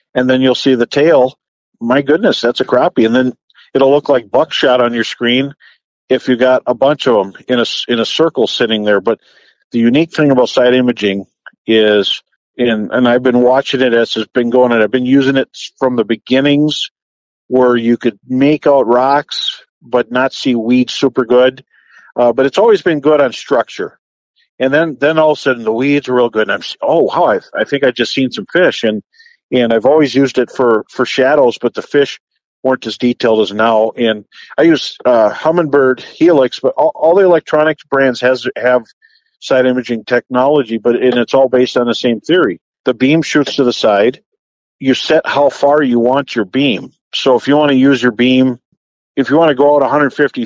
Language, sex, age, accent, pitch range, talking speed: English, male, 50-69, American, 120-145 Hz, 210 wpm